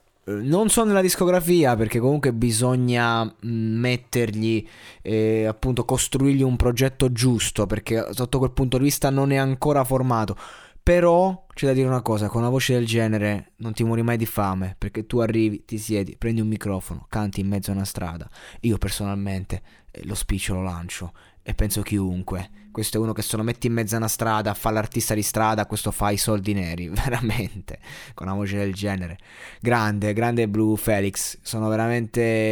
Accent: native